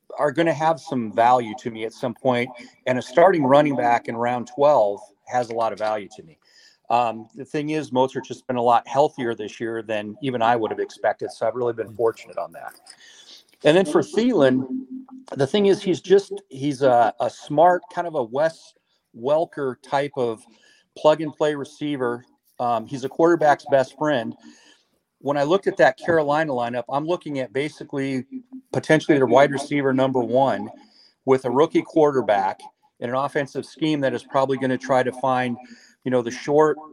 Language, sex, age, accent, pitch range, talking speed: English, male, 40-59, American, 125-150 Hz, 190 wpm